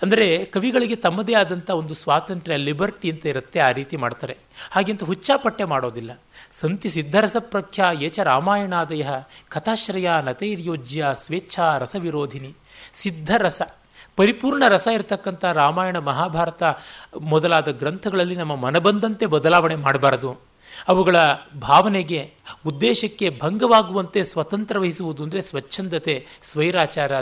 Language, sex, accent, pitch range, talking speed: Kannada, male, native, 140-200 Hz, 95 wpm